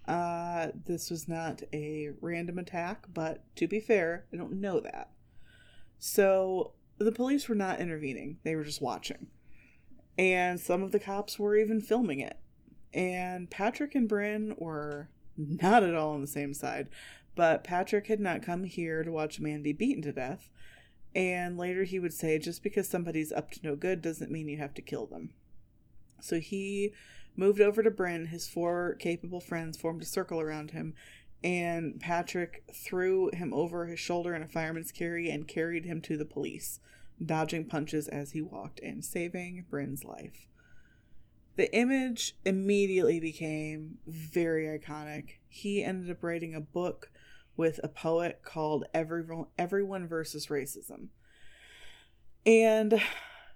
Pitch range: 155-190 Hz